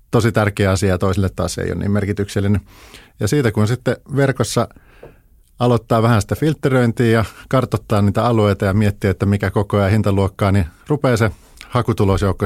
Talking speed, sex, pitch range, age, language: 170 wpm, male, 95-115 Hz, 50-69, Finnish